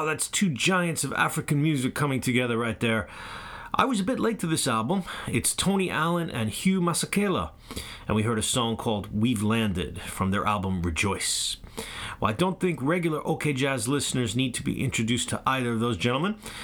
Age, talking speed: 30-49, 195 wpm